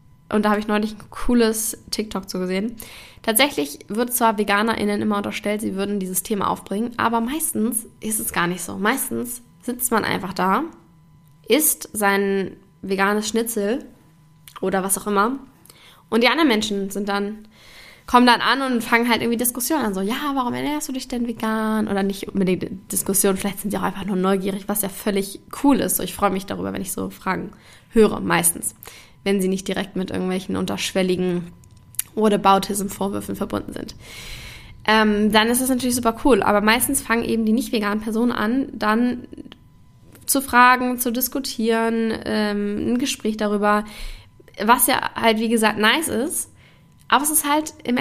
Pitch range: 190-235 Hz